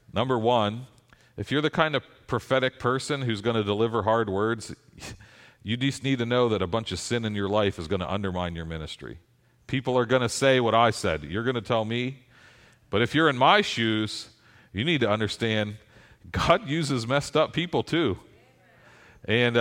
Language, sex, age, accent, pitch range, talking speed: English, male, 40-59, American, 95-130 Hz, 195 wpm